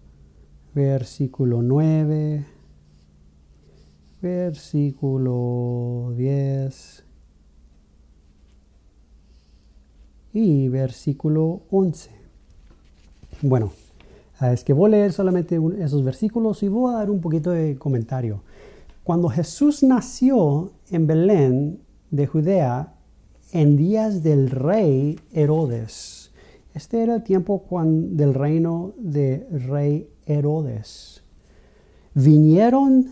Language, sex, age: Spanish, male, 40-59